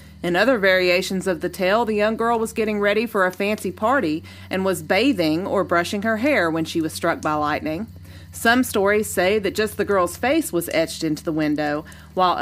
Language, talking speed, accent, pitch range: English, 210 wpm, American, 170-220 Hz